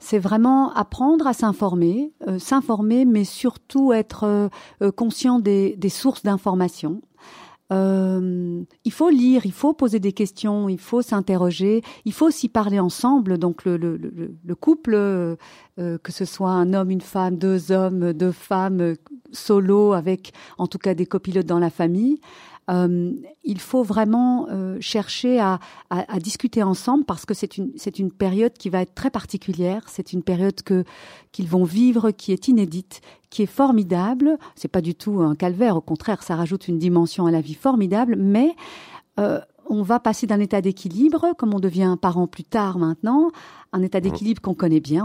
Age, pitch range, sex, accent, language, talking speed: 40-59, 180-235 Hz, female, French, French, 175 wpm